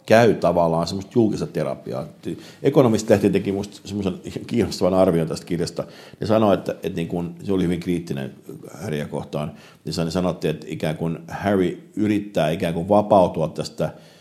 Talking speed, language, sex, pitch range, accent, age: 150 wpm, Finnish, male, 75-90 Hz, native, 50-69